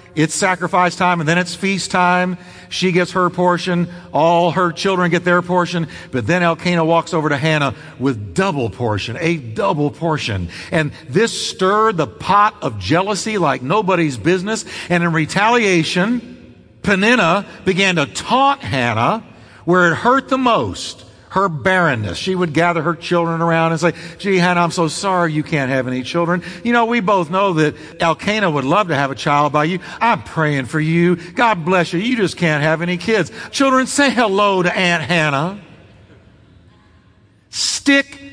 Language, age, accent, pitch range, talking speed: English, 50-69, American, 150-205 Hz, 170 wpm